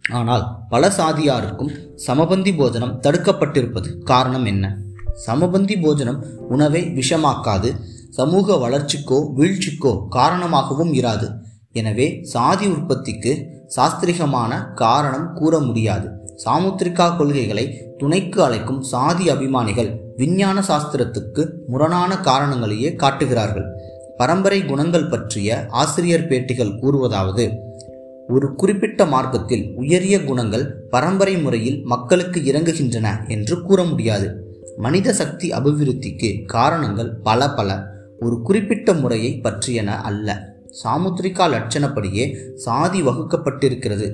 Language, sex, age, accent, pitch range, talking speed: Tamil, male, 20-39, native, 115-160 Hz, 90 wpm